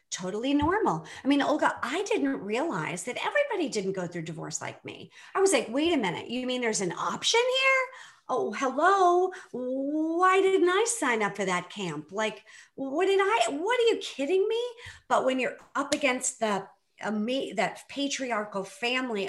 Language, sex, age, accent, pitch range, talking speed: English, female, 50-69, American, 185-275 Hz, 175 wpm